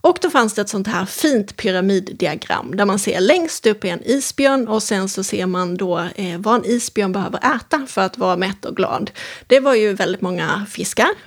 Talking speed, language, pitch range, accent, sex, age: 215 wpm, Swedish, 195-245 Hz, native, female, 30-49